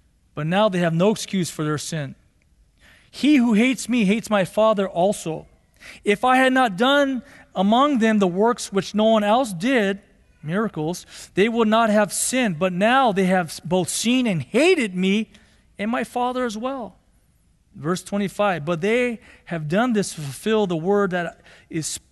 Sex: male